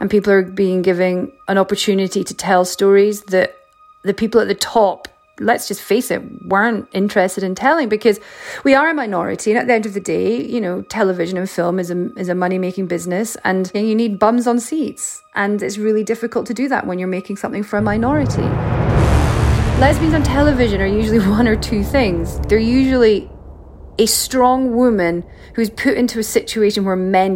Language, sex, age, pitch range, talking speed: English, female, 30-49, 195-245 Hz, 190 wpm